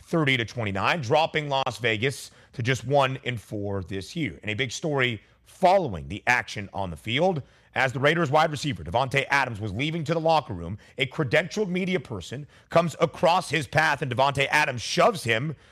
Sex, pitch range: male, 115-155 Hz